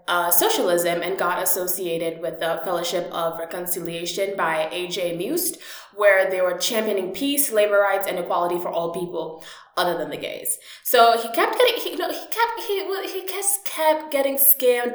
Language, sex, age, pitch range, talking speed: English, female, 20-39, 180-255 Hz, 185 wpm